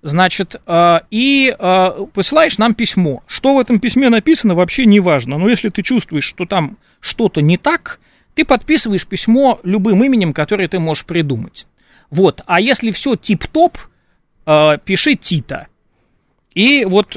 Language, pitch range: Russian, 155-210 Hz